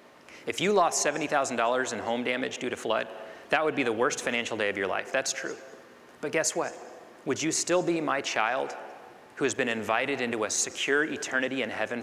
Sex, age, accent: male, 30-49, American